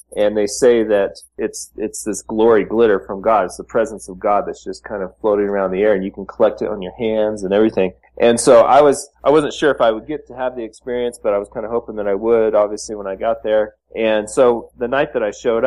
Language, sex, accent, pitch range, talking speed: English, male, American, 105-125 Hz, 270 wpm